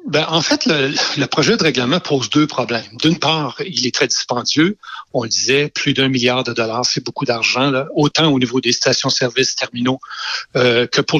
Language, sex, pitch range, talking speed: French, male, 130-185 Hz, 205 wpm